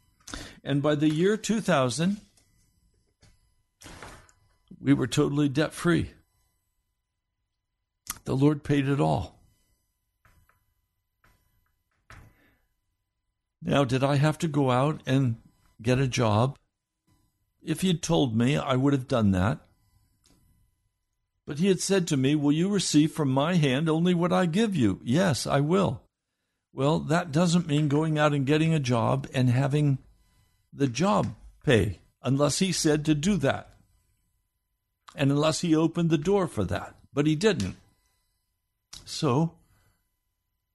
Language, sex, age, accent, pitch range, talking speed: English, male, 60-79, American, 100-155 Hz, 130 wpm